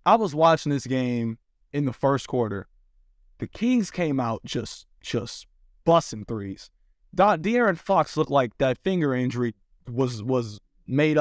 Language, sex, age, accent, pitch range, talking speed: English, male, 20-39, American, 115-160 Hz, 145 wpm